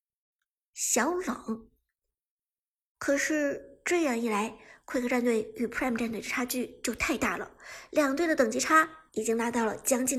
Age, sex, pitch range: 50-69, male, 235-335 Hz